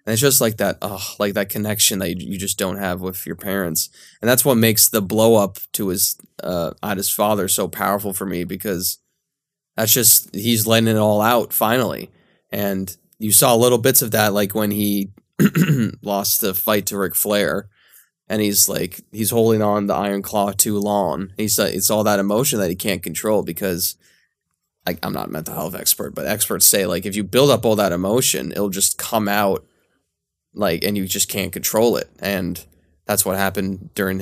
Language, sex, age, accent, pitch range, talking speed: English, male, 20-39, American, 95-110 Hz, 205 wpm